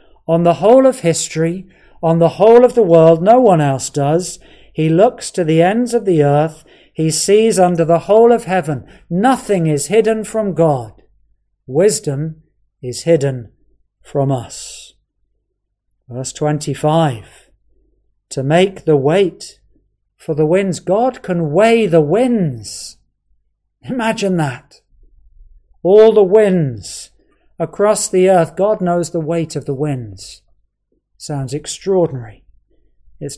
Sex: male